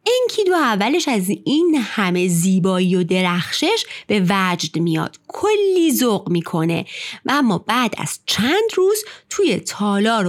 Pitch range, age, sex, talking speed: 175-300 Hz, 30-49, female, 135 wpm